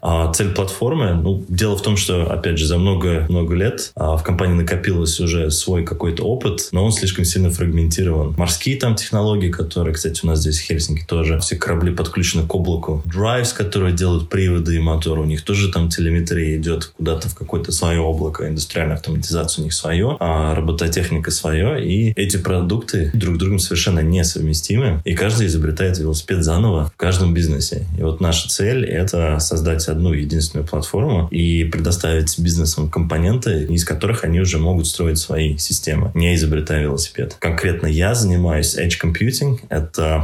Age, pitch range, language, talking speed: 20-39, 80-95 Hz, Russian, 165 wpm